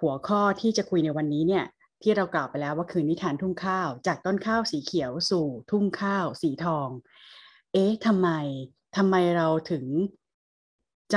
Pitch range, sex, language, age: 155-190 Hz, female, Thai, 20-39